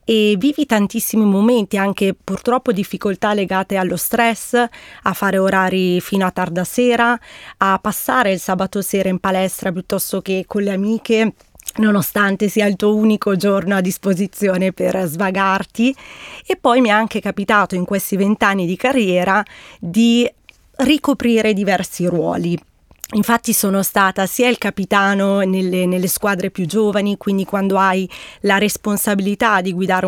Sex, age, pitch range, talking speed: female, 20-39, 190-220 Hz, 145 wpm